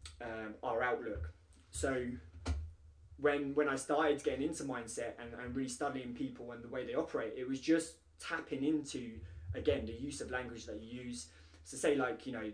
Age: 20-39